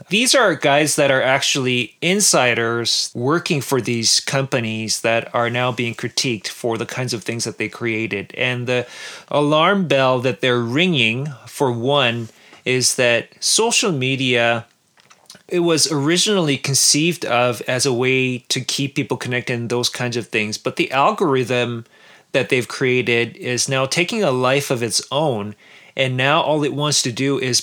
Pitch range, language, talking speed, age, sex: 120-145 Hz, English, 165 wpm, 30-49, male